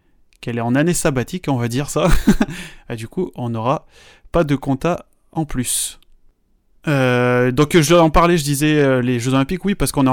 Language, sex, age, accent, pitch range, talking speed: French, male, 20-39, French, 125-150 Hz, 200 wpm